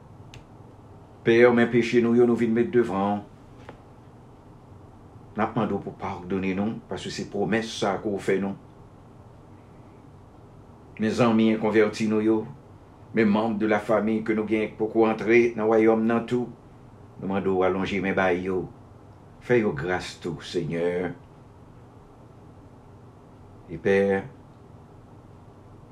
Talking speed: 115 wpm